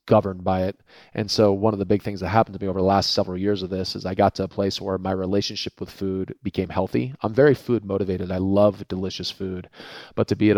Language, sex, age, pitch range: English, male, 30-49, 95-100 Hz